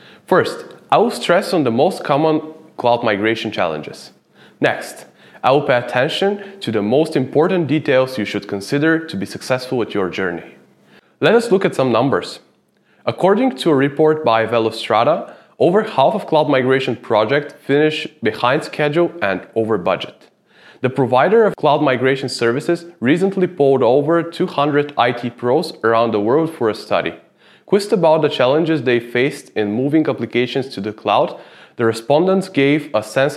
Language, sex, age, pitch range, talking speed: English, male, 20-39, 115-160 Hz, 160 wpm